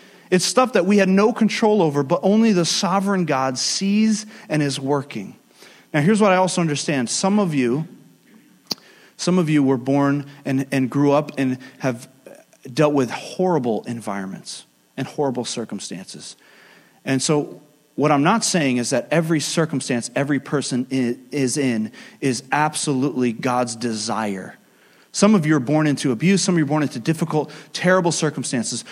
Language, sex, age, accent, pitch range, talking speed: English, male, 30-49, American, 135-190 Hz, 160 wpm